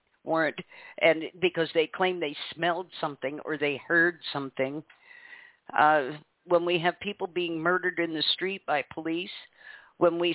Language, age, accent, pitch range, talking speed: English, 50-69, American, 165-195 Hz, 150 wpm